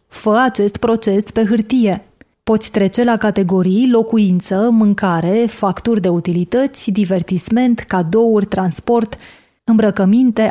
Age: 30-49